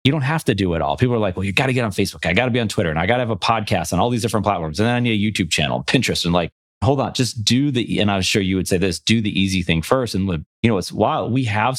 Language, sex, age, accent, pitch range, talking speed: English, male, 30-49, American, 90-115 Hz, 350 wpm